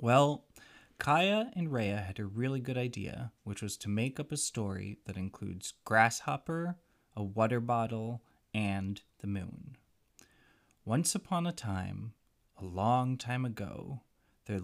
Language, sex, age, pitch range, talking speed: English, male, 20-39, 100-130 Hz, 140 wpm